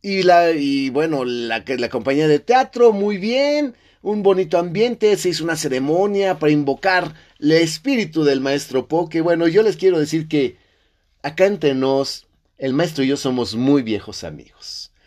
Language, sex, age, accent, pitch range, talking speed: Spanish, male, 30-49, Mexican, 120-160 Hz, 165 wpm